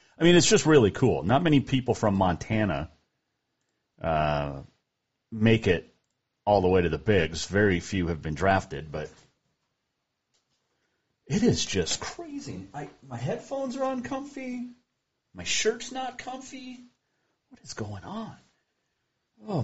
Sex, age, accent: male, 40-59, American